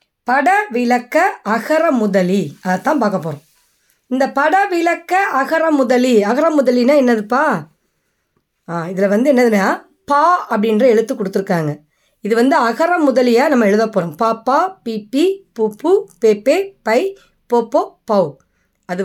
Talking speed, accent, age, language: 105 wpm, native, 20-39, Tamil